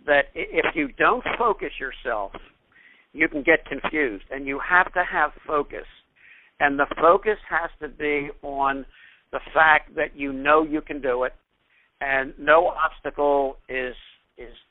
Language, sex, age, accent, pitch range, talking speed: English, male, 60-79, American, 135-170 Hz, 150 wpm